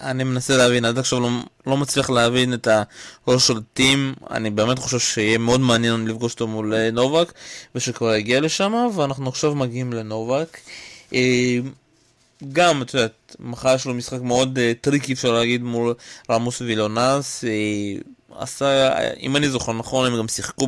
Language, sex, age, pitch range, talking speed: Hebrew, male, 20-39, 115-140 Hz, 150 wpm